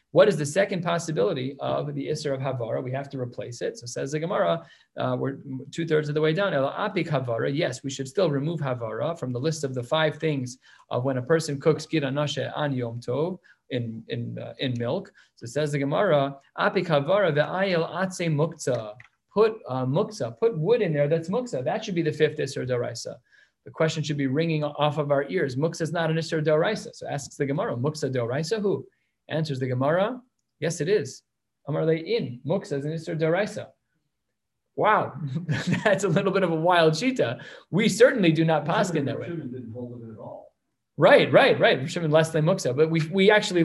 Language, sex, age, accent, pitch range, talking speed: English, male, 30-49, American, 135-170 Hz, 185 wpm